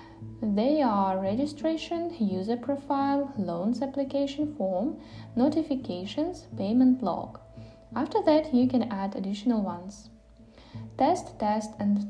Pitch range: 190-250 Hz